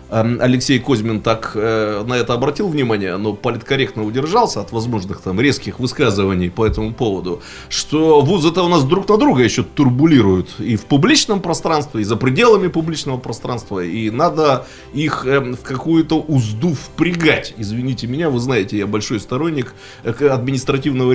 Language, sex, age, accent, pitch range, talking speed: Russian, male, 30-49, native, 110-150 Hz, 150 wpm